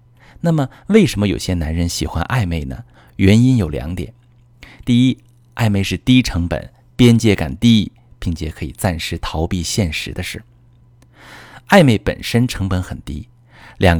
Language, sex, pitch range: Chinese, male, 90-120 Hz